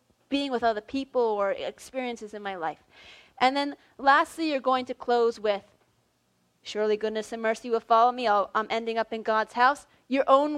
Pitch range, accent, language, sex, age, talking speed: 210-260 Hz, American, English, female, 30-49, 185 wpm